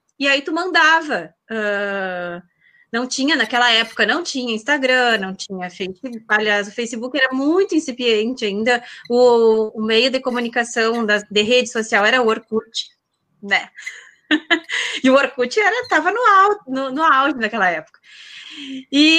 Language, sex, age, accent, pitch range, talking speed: Portuguese, female, 20-39, Brazilian, 235-300 Hz, 145 wpm